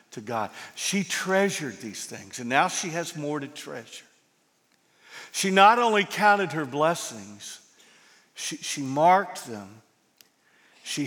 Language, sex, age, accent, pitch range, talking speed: English, male, 50-69, American, 140-190 Hz, 125 wpm